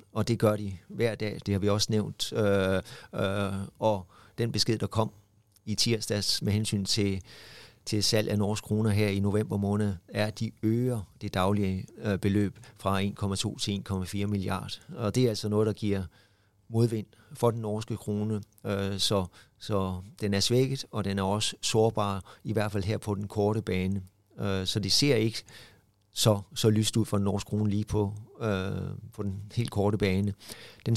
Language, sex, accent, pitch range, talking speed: Danish, male, native, 100-115 Hz, 190 wpm